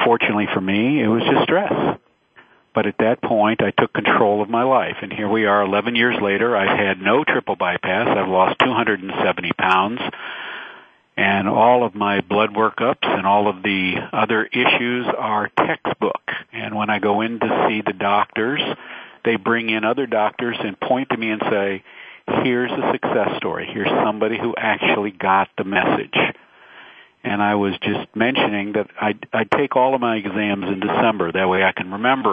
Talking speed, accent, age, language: 180 wpm, American, 50-69, English